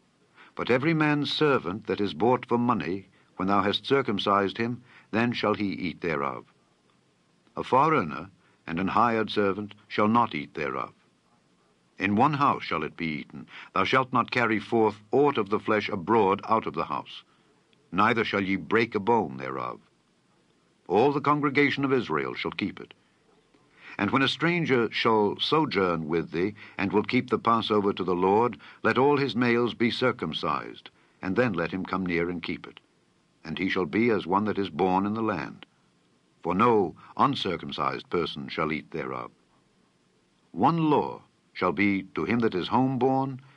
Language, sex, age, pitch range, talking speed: English, male, 60-79, 95-125 Hz, 170 wpm